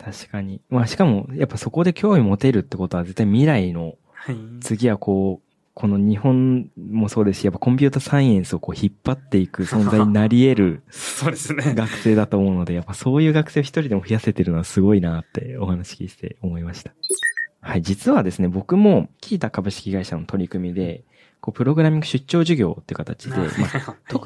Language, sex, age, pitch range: Japanese, male, 20-39, 95-150 Hz